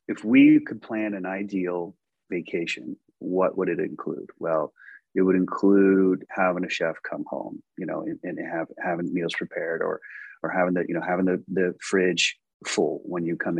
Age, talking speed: 30-49, 185 wpm